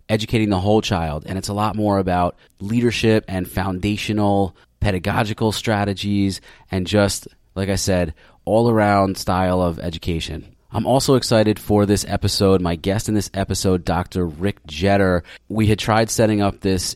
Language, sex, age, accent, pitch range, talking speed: English, male, 30-49, American, 95-110 Hz, 160 wpm